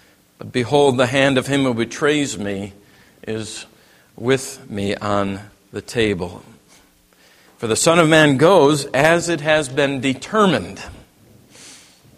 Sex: male